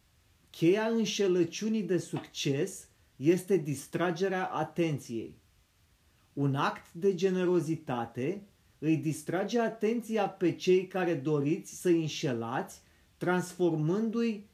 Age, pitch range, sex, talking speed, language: 30-49, 135-185 Hz, male, 85 wpm, Romanian